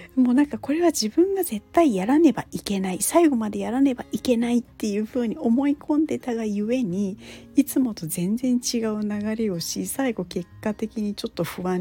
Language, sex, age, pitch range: Japanese, female, 40-59, 185-250 Hz